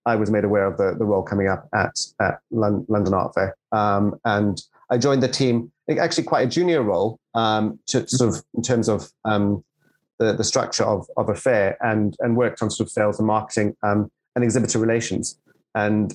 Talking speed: 205 wpm